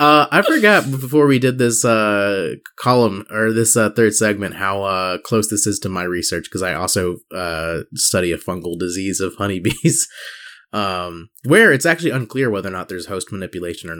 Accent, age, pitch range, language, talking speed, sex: American, 20-39, 95-130 Hz, English, 190 wpm, male